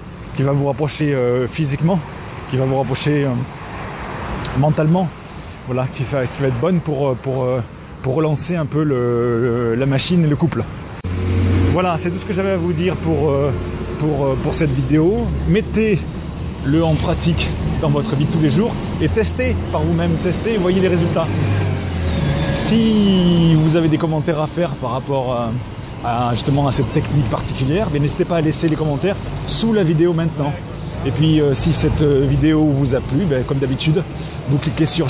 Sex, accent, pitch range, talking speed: male, French, 125-160 Hz, 180 wpm